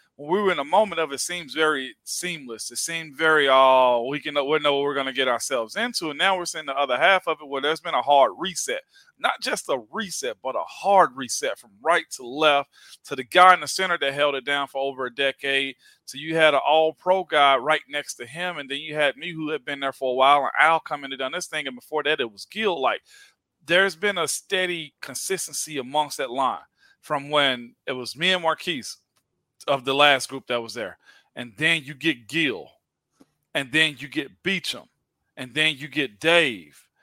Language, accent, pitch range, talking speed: English, American, 135-175 Hz, 225 wpm